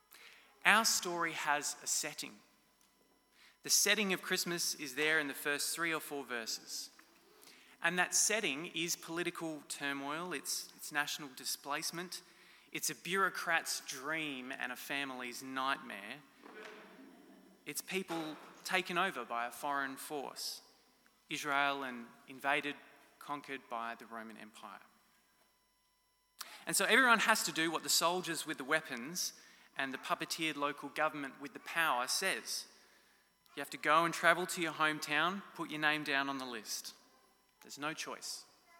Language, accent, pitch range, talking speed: English, Australian, 145-180 Hz, 140 wpm